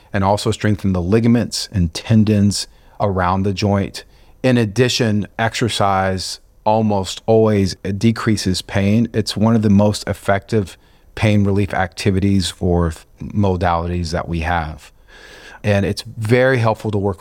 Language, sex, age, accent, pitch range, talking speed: English, male, 40-59, American, 95-110 Hz, 130 wpm